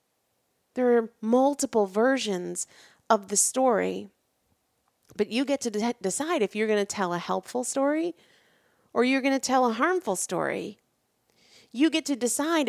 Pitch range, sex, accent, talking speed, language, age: 190-260 Hz, female, American, 150 wpm, English, 30-49